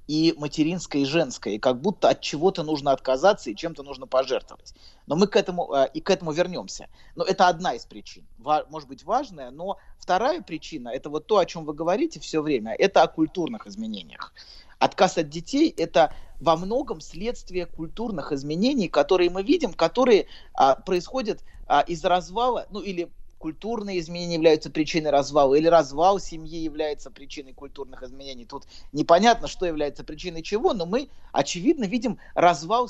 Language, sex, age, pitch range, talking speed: Russian, male, 30-49, 140-195 Hz, 160 wpm